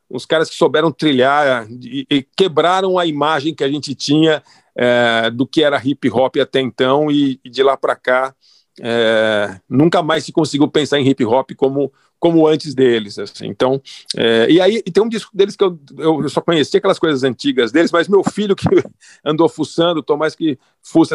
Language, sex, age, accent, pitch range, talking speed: Portuguese, male, 50-69, Brazilian, 130-170 Hz, 190 wpm